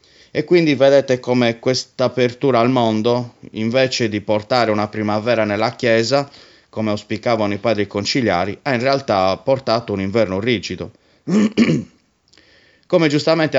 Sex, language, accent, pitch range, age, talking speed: male, Italian, native, 105-125 Hz, 30-49, 130 wpm